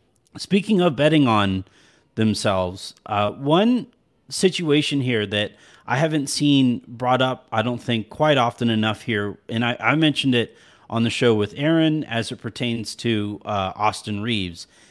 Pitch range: 110-140 Hz